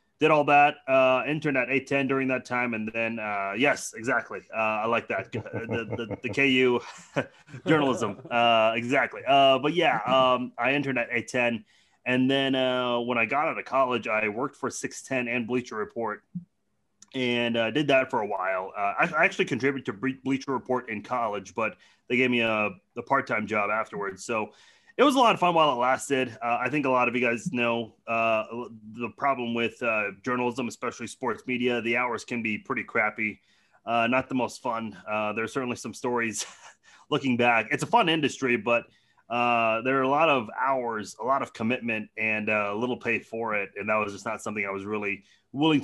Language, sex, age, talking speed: English, male, 30-49, 205 wpm